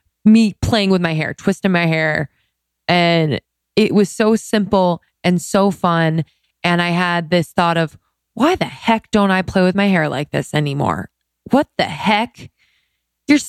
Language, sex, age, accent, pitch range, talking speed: English, female, 20-39, American, 160-200 Hz, 170 wpm